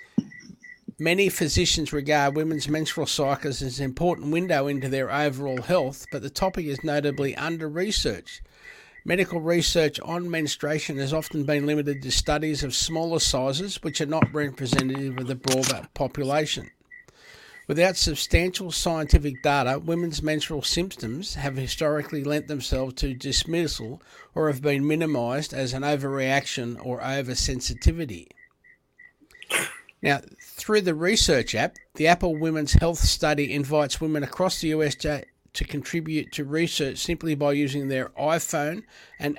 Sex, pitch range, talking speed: male, 140-165 Hz, 135 wpm